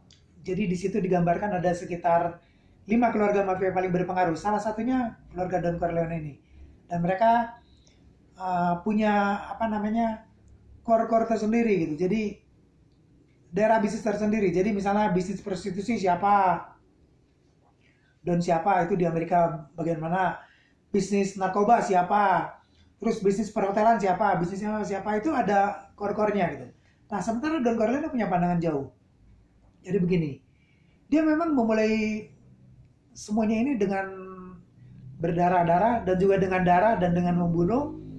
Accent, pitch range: native, 175-220 Hz